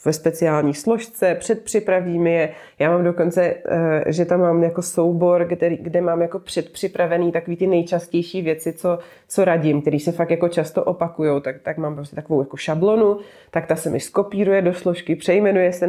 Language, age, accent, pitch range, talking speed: Czech, 20-39, native, 160-185 Hz, 180 wpm